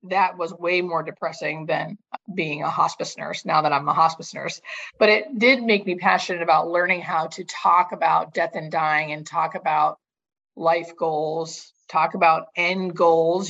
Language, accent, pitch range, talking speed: English, American, 165-195 Hz, 180 wpm